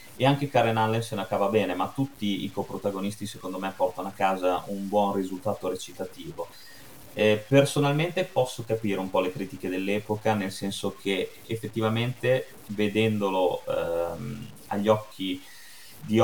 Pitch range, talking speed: 95-110 Hz, 145 wpm